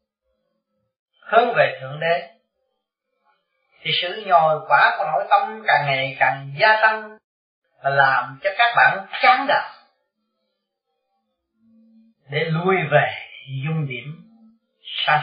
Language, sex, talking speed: Vietnamese, male, 115 wpm